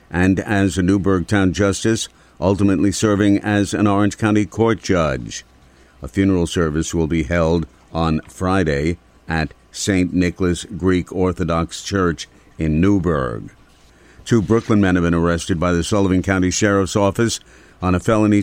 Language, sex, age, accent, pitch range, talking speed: English, male, 50-69, American, 90-110 Hz, 145 wpm